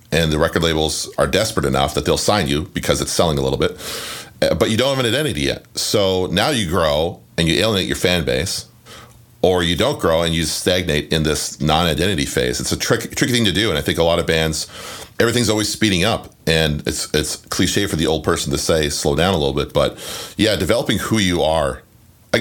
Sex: male